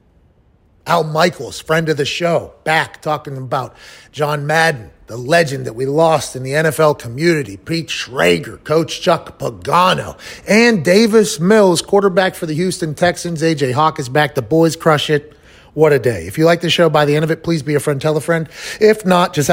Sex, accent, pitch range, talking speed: male, American, 155-200 Hz, 195 wpm